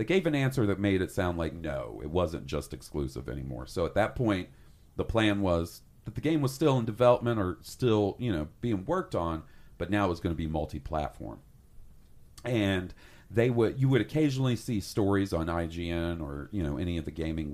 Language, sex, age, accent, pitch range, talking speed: English, male, 40-59, American, 80-115 Hz, 210 wpm